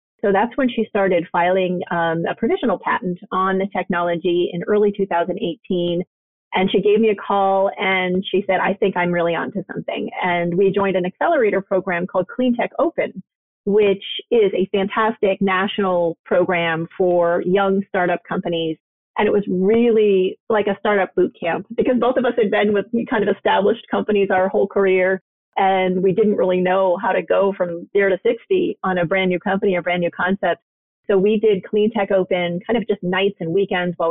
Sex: female